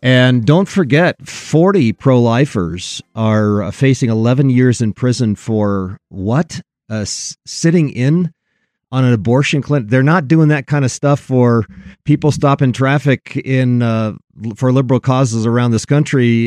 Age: 40-59